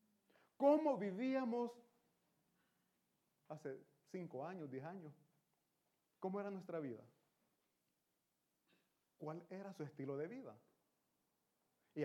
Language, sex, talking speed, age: Italian, male, 90 wpm, 40-59